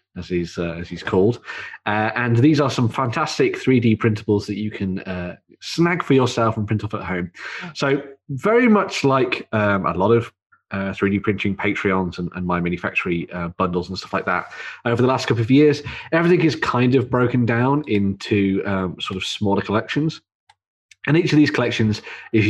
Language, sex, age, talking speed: English, male, 30-49, 190 wpm